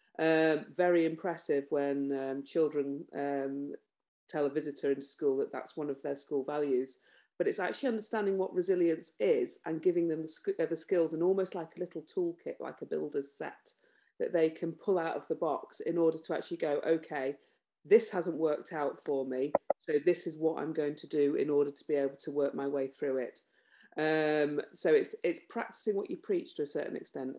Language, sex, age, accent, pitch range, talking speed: English, female, 40-59, British, 145-180 Hz, 205 wpm